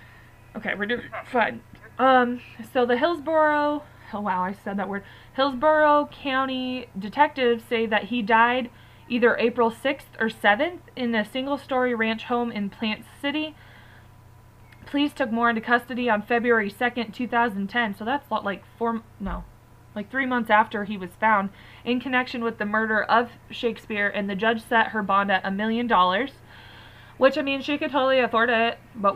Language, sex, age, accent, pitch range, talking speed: English, female, 20-39, American, 205-255 Hz, 170 wpm